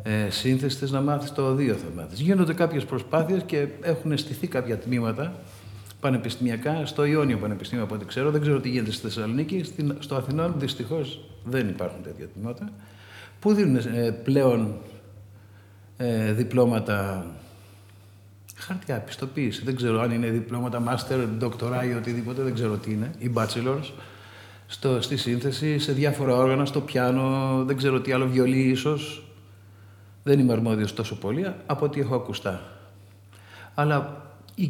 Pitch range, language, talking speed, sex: 105-150 Hz, Greek, 140 wpm, male